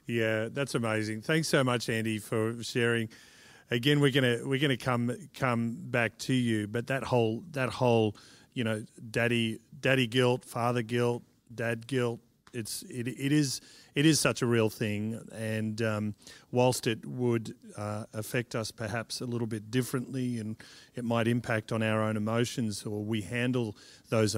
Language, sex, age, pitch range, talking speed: English, male, 40-59, 110-125 Hz, 165 wpm